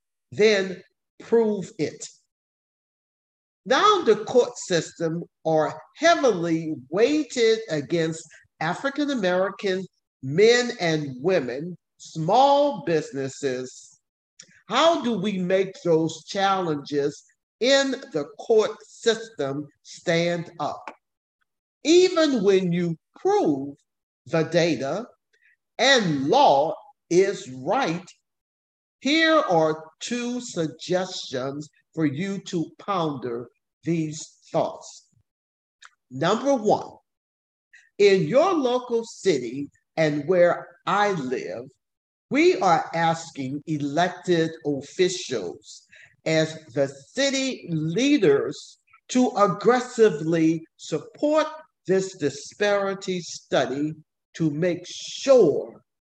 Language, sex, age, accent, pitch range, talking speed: English, male, 50-69, American, 160-250 Hz, 80 wpm